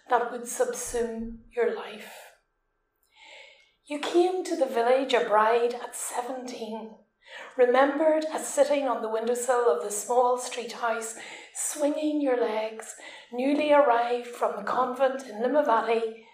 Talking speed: 125 wpm